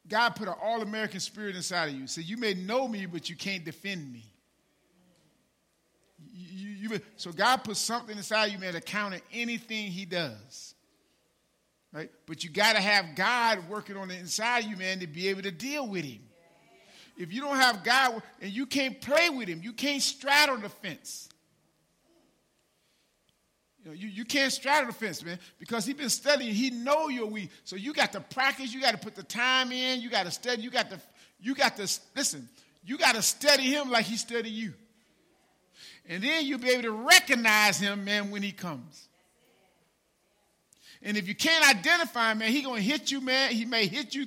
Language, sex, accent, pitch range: English, male, American, 195-255 Hz